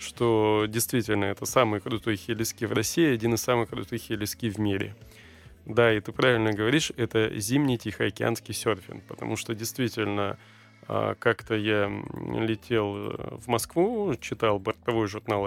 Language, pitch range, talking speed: Russian, 105-120 Hz, 135 wpm